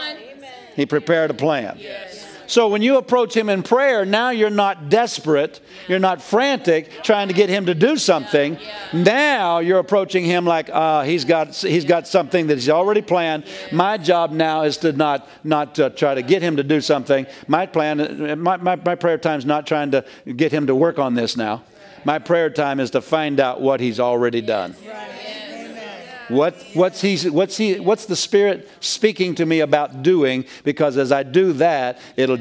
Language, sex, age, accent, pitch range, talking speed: English, male, 50-69, American, 150-205 Hz, 190 wpm